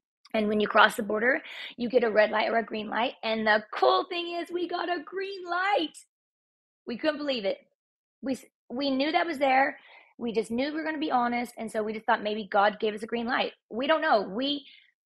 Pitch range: 195-265 Hz